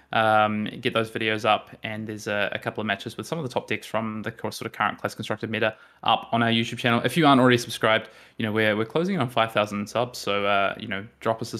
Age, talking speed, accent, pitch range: 20-39, 270 wpm, Australian, 105-115 Hz